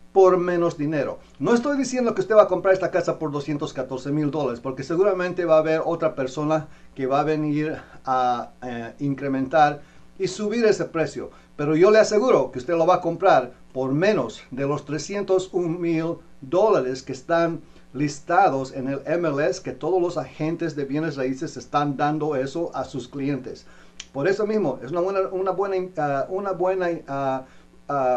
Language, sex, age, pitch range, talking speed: English, male, 50-69, 135-175 Hz, 180 wpm